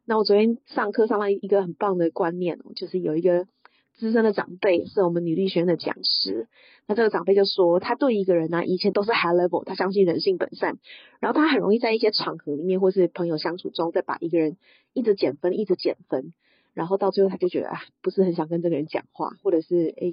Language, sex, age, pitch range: Chinese, female, 30-49, 185-255 Hz